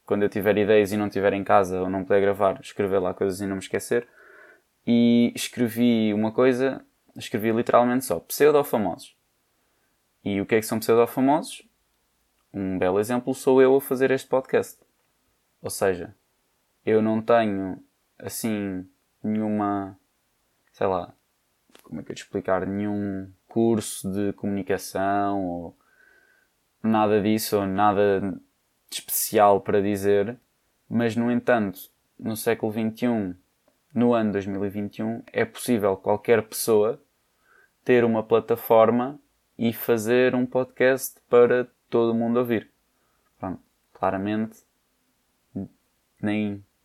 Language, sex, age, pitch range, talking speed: Portuguese, male, 20-39, 100-120 Hz, 125 wpm